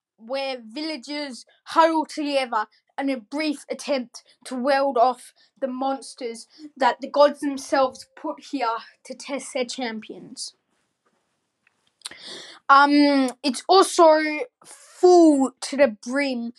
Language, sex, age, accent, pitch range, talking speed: English, female, 10-29, Australian, 255-310 Hz, 110 wpm